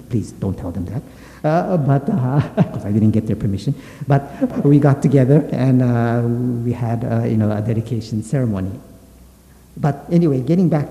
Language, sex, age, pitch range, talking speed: English, male, 50-69, 105-130 Hz, 175 wpm